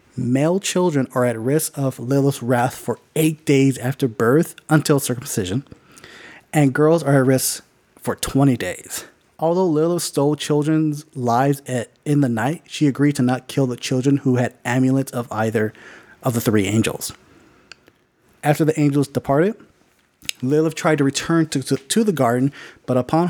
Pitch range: 125-155 Hz